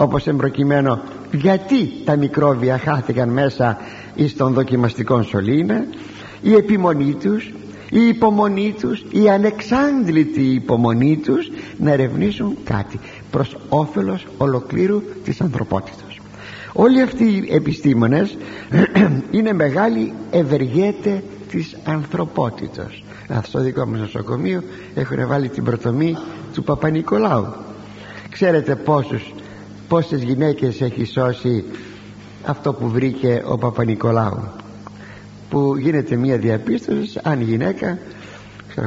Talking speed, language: 100 wpm, Greek